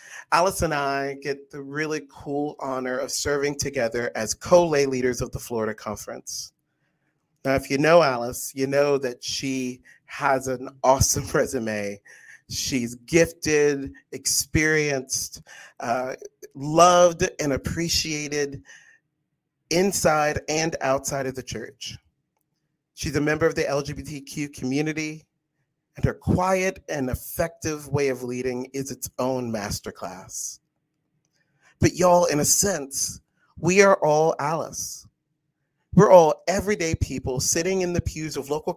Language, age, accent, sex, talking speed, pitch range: English, 40-59, American, male, 125 wpm, 135-165 Hz